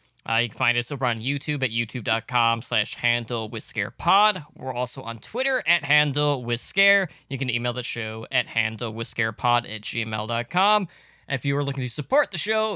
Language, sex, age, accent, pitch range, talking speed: English, male, 20-39, American, 115-150 Hz, 165 wpm